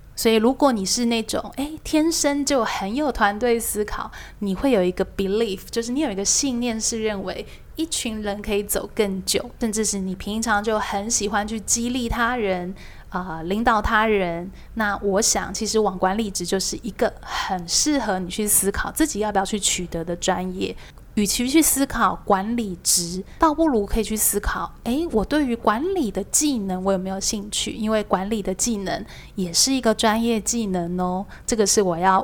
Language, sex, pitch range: Chinese, female, 190-230 Hz